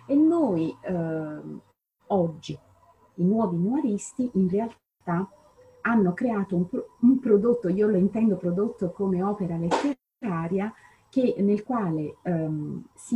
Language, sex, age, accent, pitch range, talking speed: Italian, female, 30-49, native, 165-215 Hz, 125 wpm